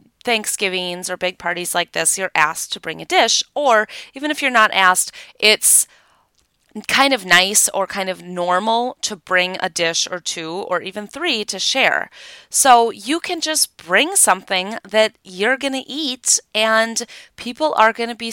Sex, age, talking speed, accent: female, 30-49, 175 wpm, American